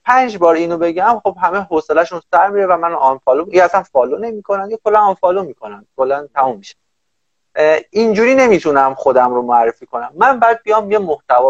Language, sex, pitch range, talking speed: Persian, male, 140-210 Hz, 185 wpm